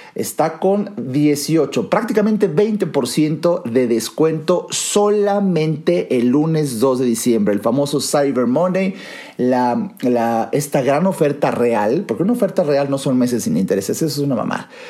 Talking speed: 145 wpm